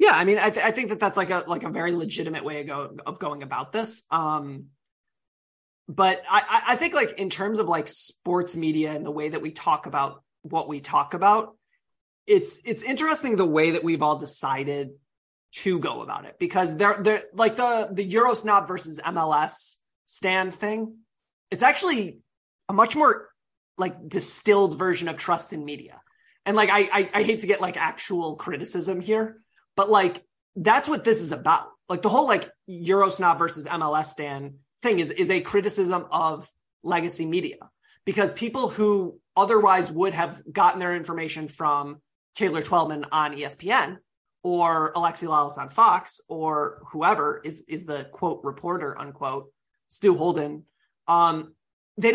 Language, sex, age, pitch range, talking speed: English, male, 30-49, 155-210 Hz, 170 wpm